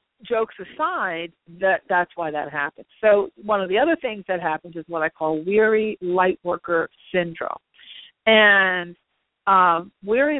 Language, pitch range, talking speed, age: English, 165-190 Hz, 150 wpm, 40-59